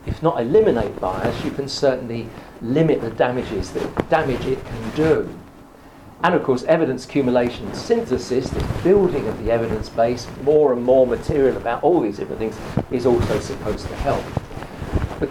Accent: British